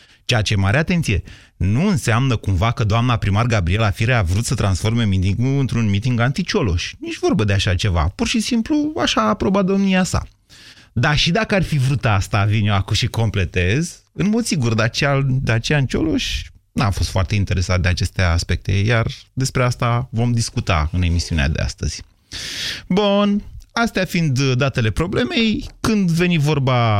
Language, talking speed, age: Romanian, 170 wpm, 30-49